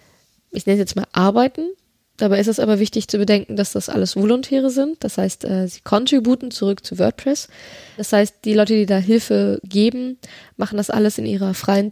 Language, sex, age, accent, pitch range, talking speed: German, female, 20-39, German, 190-220 Hz, 195 wpm